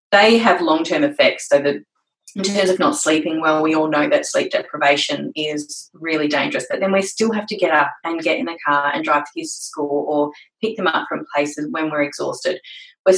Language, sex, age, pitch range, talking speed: English, female, 20-39, 160-250 Hz, 230 wpm